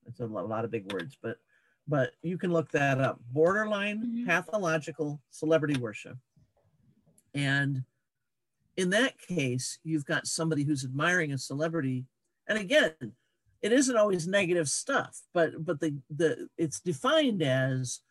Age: 50-69